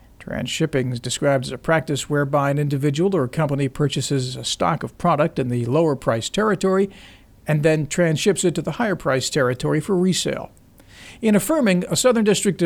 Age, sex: 50-69, male